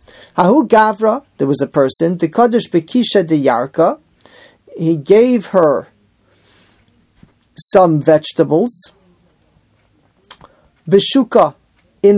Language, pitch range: English, 155-205 Hz